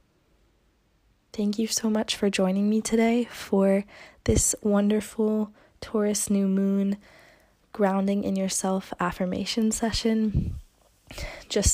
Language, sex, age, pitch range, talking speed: English, female, 20-39, 190-225 Hz, 100 wpm